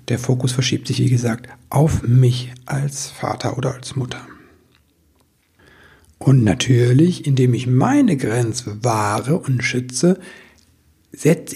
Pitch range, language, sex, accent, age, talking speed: 125-150 Hz, German, male, German, 60-79, 120 wpm